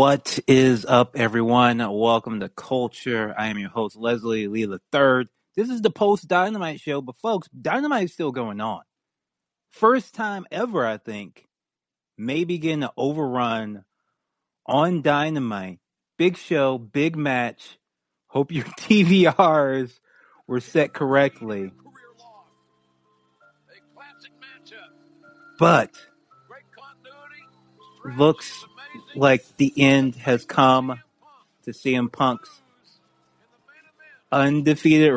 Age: 30-49